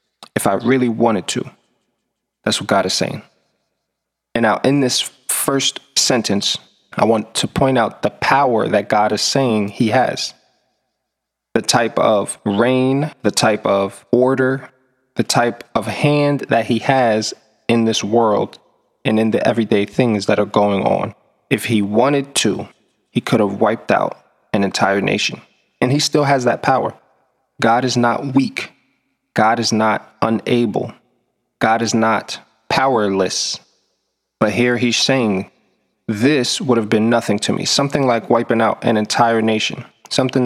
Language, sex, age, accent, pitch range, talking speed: English, male, 20-39, American, 105-130 Hz, 155 wpm